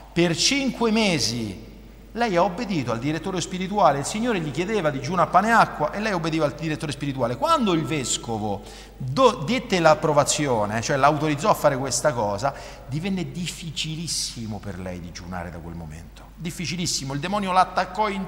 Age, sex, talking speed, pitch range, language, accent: 50-69, male, 160 wpm, 130-185 Hz, Italian, native